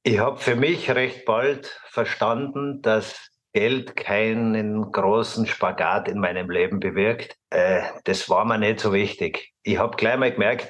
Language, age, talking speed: German, 50-69, 155 wpm